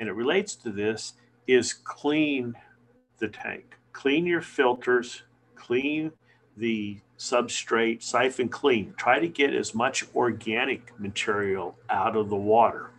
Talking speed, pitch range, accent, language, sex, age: 130 wpm, 105-125 Hz, American, English, male, 50-69